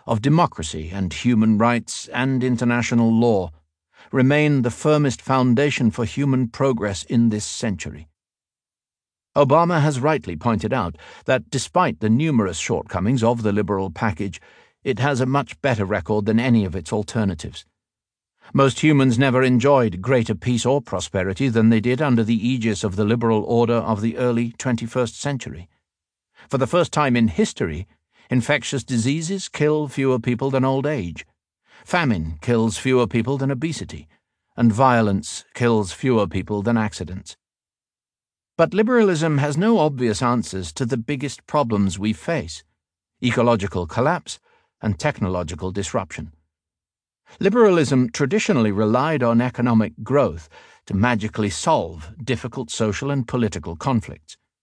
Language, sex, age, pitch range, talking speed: Arabic, male, 50-69, 100-135 Hz, 135 wpm